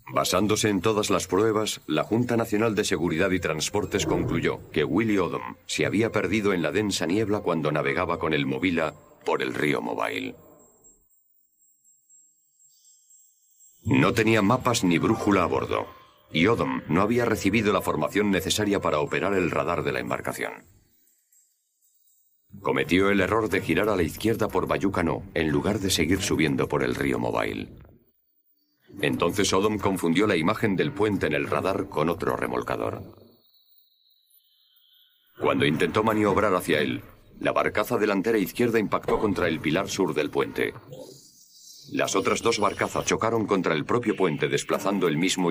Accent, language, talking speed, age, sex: Spanish, Spanish, 150 wpm, 50-69, male